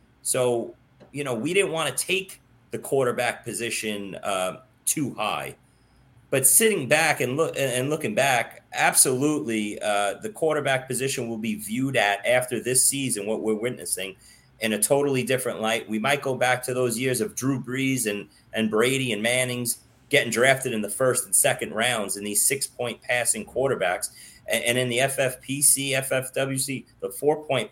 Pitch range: 115-140 Hz